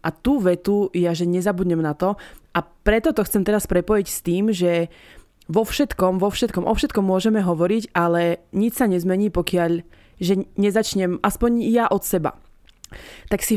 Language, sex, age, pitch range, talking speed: Slovak, female, 20-39, 170-195 Hz, 170 wpm